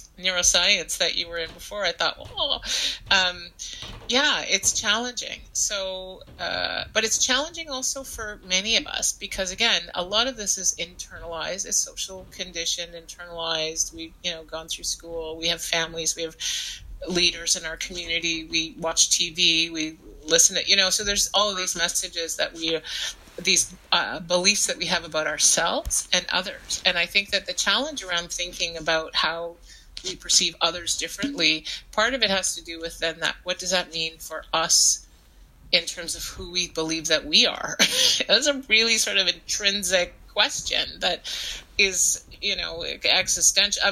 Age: 30-49